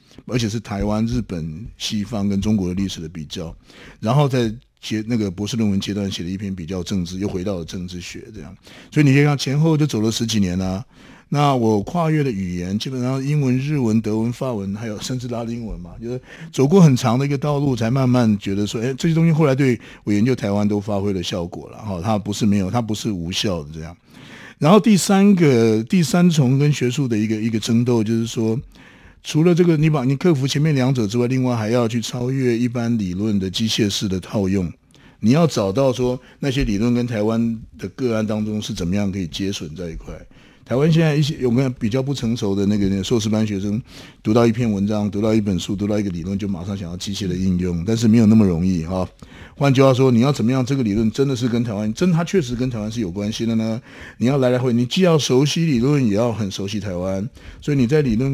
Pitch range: 100-130 Hz